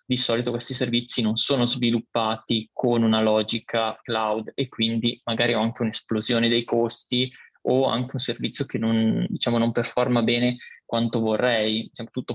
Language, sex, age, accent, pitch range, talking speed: Italian, male, 20-39, native, 115-125 Hz, 155 wpm